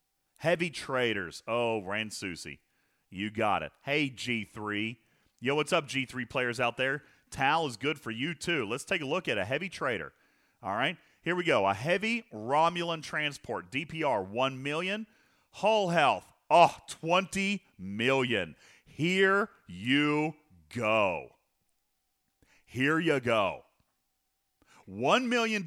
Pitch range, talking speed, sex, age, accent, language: 120-190 Hz, 130 wpm, male, 40-59, American, English